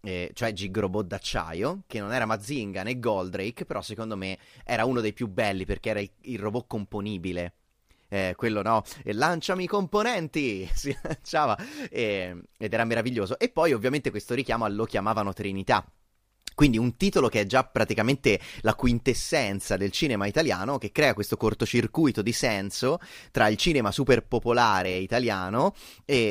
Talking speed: 155 wpm